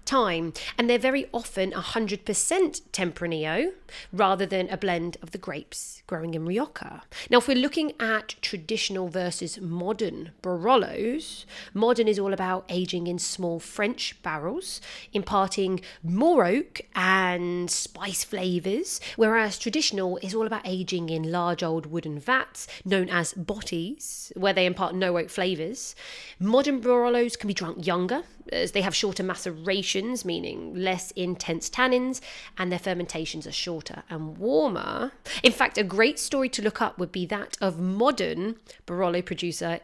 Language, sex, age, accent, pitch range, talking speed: English, female, 30-49, British, 180-230 Hz, 150 wpm